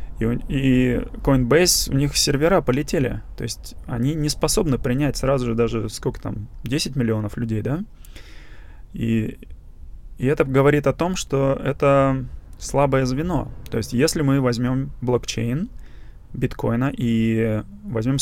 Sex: male